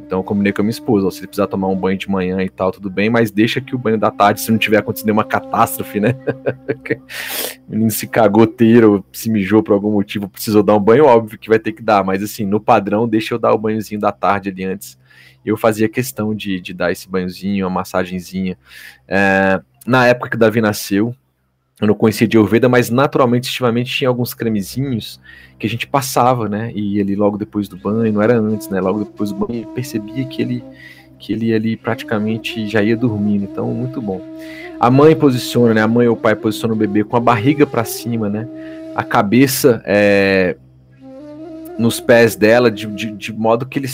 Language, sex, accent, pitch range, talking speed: Portuguese, male, Brazilian, 100-120 Hz, 215 wpm